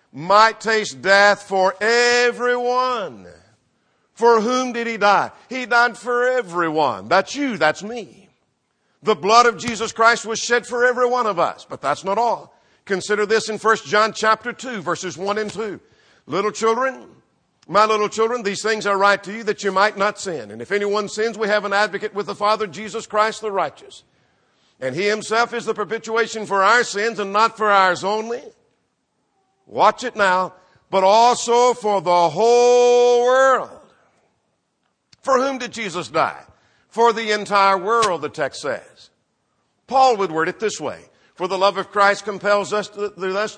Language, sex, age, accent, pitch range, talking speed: English, male, 50-69, American, 195-230 Hz, 175 wpm